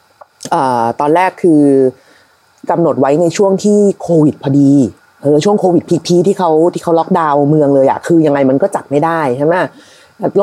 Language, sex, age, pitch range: Thai, female, 30-49, 150-220 Hz